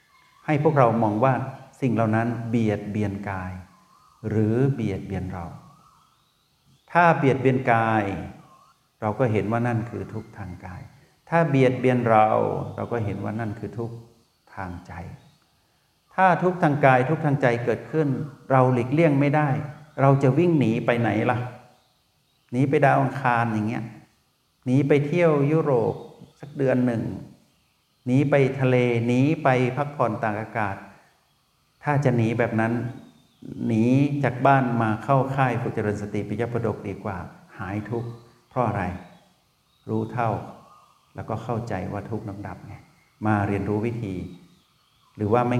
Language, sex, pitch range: Thai, male, 105-135 Hz